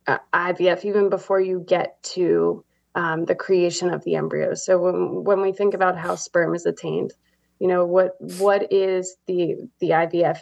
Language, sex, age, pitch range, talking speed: English, female, 20-39, 180-195 Hz, 180 wpm